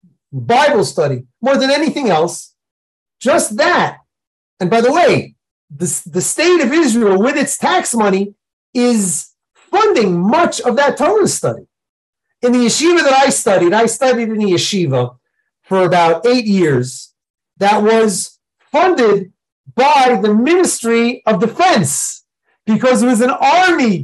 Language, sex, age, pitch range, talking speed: English, male, 40-59, 195-270 Hz, 140 wpm